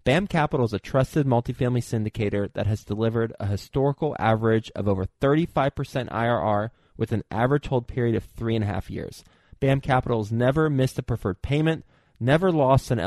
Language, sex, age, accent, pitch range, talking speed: English, male, 20-39, American, 115-150 Hz, 180 wpm